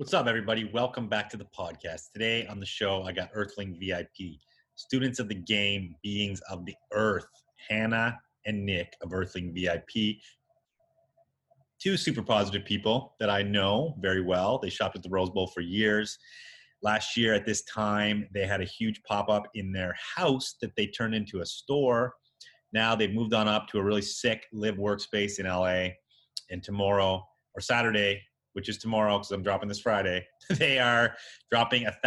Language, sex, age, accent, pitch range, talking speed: English, male, 30-49, American, 100-115 Hz, 175 wpm